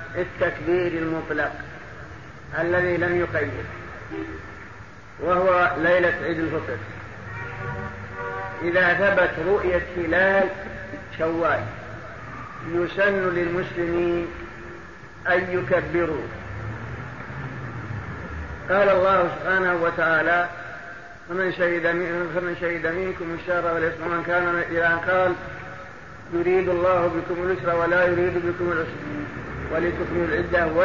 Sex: male